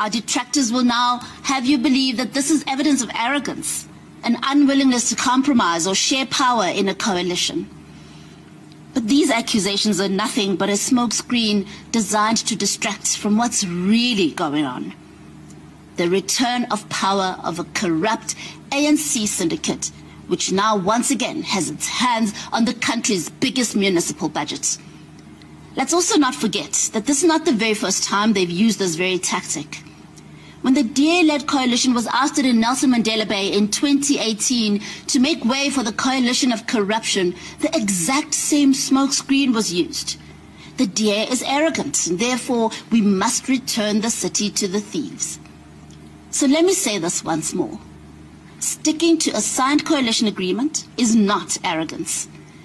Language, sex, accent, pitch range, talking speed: English, female, South African, 205-275 Hz, 155 wpm